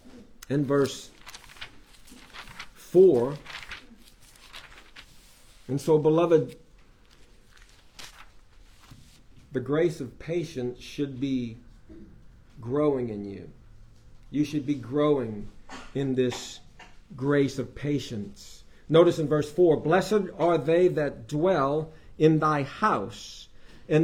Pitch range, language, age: 135-180 Hz, English, 50-69